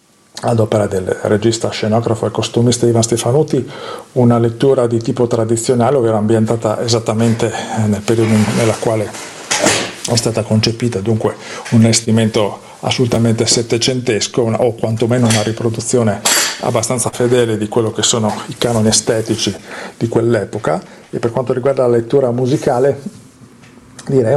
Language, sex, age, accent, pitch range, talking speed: Italian, male, 40-59, native, 110-125 Hz, 130 wpm